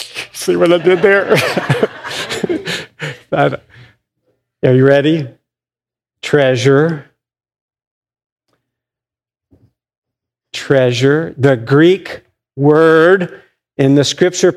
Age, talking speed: 50-69, 65 wpm